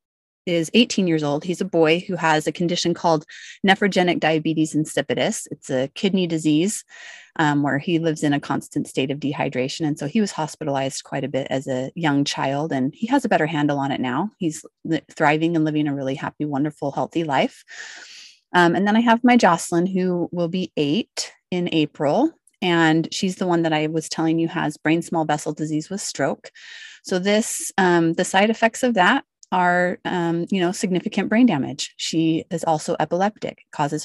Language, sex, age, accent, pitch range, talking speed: English, female, 30-49, American, 155-195 Hz, 190 wpm